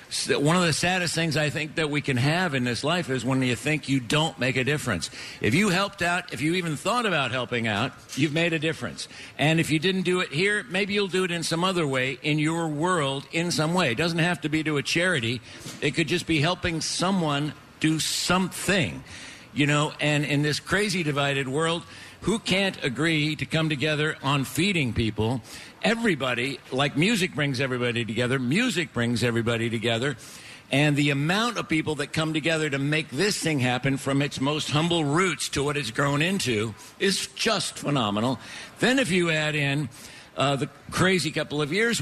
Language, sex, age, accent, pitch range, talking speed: English, male, 60-79, American, 135-170 Hz, 200 wpm